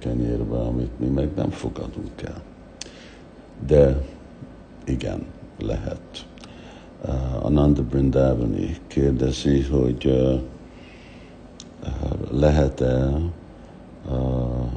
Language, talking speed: Hungarian, 55 wpm